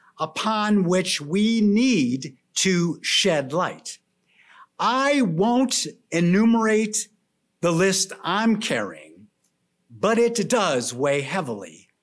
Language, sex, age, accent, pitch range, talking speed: English, male, 50-69, American, 180-235 Hz, 95 wpm